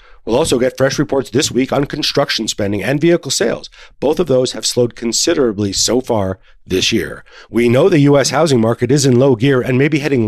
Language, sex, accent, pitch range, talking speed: English, male, American, 110-140 Hz, 215 wpm